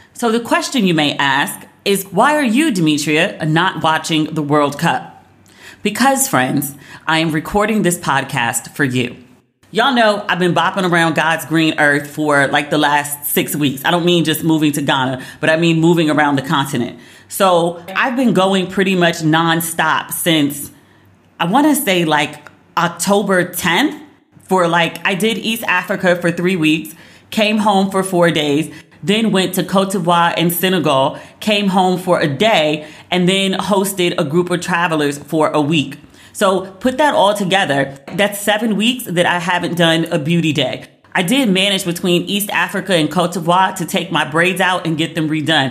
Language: English